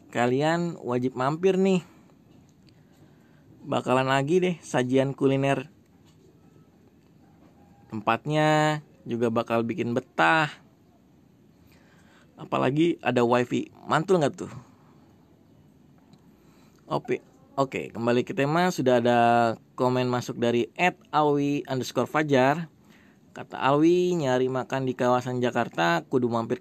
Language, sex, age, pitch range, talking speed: Indonesian, male, 20-39, 125-170 Hz, 95 wpm